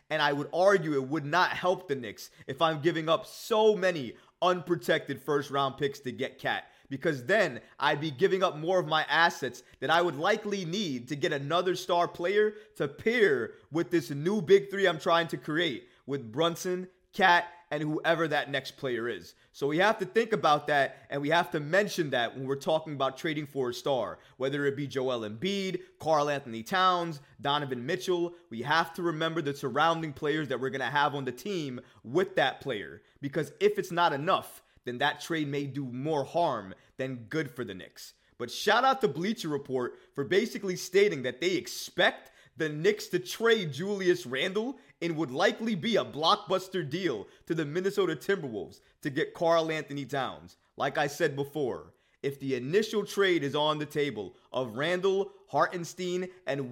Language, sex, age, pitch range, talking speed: English, male, 20-39, 140-180 Hz, 190 wpm